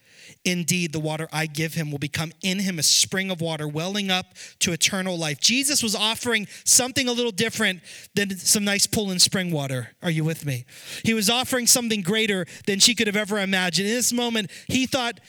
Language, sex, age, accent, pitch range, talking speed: English, male, 30-49, American, 165-225 Hz, 210 wpm